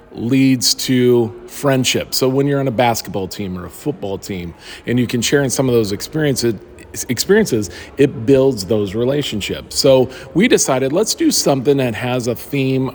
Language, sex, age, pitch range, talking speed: English, male, 40-59, 110-135 Hz, 170 wpm